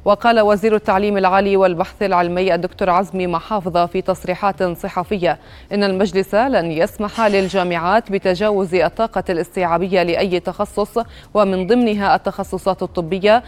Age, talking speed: 20-39, 115 wpm